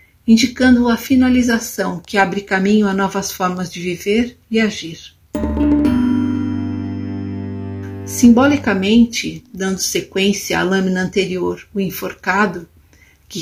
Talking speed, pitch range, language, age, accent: 100 wpm, 185-230 Hz, Portuguese, 50-69, Brazilian